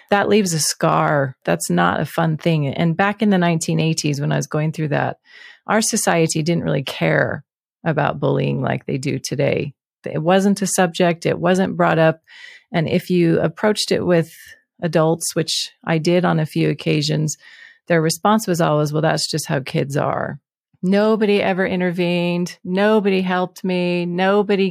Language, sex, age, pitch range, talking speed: English, female, 30-49, 155-190 Hz, 170 wpm